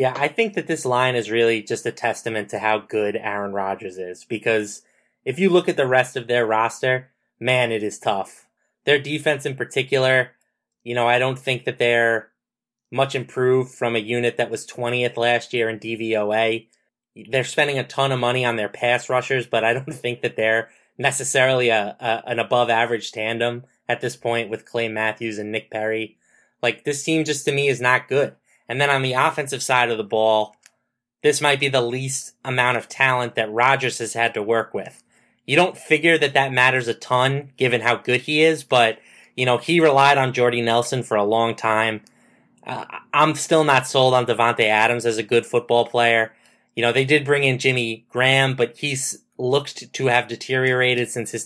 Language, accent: English, American